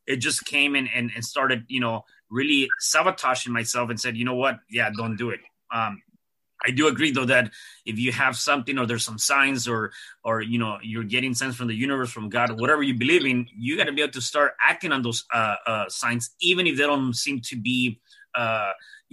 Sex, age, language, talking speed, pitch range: male, 20-39, English, 225 wpm, 115-140 Hz